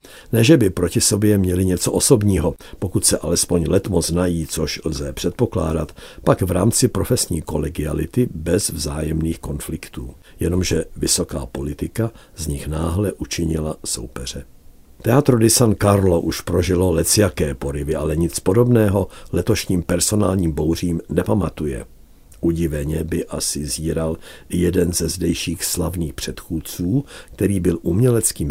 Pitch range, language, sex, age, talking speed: 80-100 Hz, Czech, male, 50-69, 120 wpm